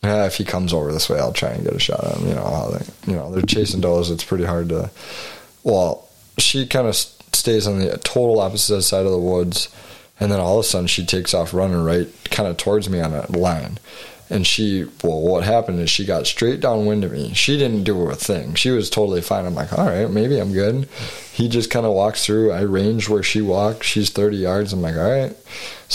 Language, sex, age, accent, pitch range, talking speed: English, male, 20-39, American, 90-105 Hz, 240 wpm